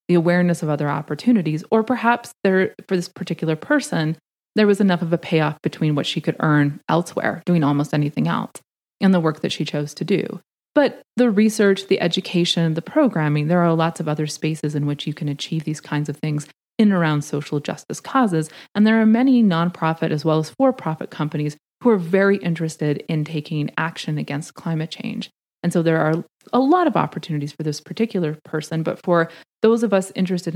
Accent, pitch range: American, 155-205 Hz